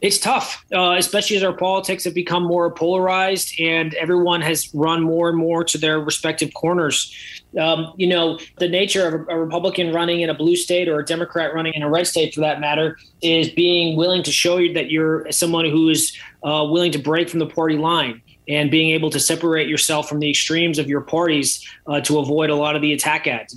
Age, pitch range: 20-39, 155-175 Hz